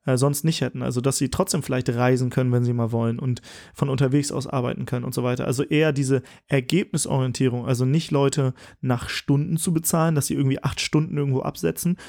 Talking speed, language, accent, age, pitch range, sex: 205 wpm, German, German, 30-49, 130-155 Hz, male